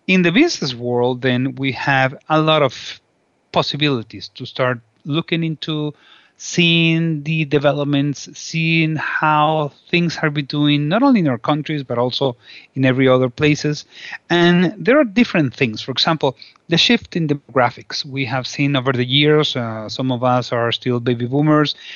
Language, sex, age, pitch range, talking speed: English, male, 40-59, 130-155 Hz, 165 wpm